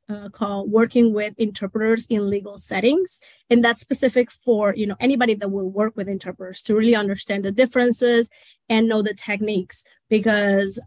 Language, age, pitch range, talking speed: English, 20-39, 200-240 Hz, 165 wpm